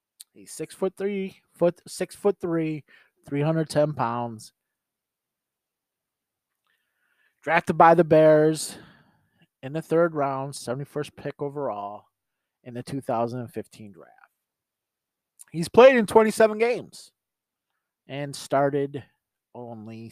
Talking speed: 105 wpm